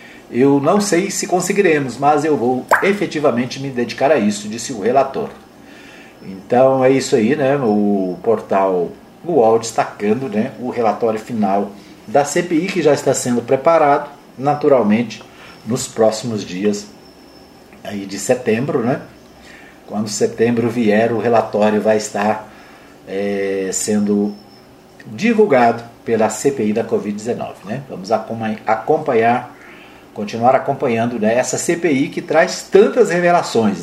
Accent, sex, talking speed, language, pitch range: Brazilian, male, 125 wpm, Portuguese, 105-165 Hz